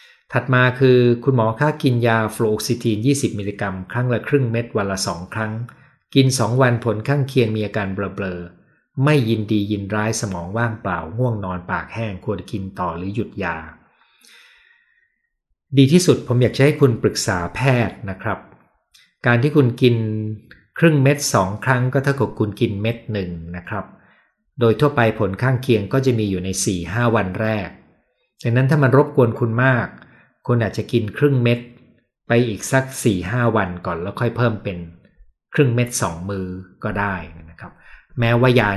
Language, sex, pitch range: Thai, male, 100-125 Hz